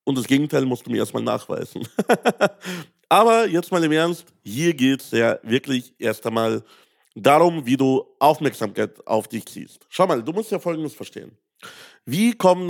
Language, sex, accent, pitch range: German, male, German, 125-160 Hz